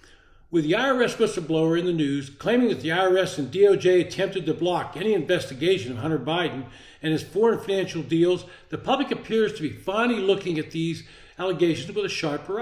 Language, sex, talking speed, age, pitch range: English, male, 185 wpm, 60-79, 165-220 Hz